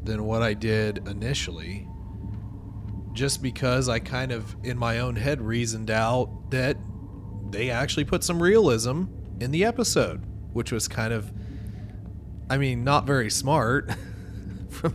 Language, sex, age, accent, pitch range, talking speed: English, male, 30-49, American, 100-125 Hz, 140 wpm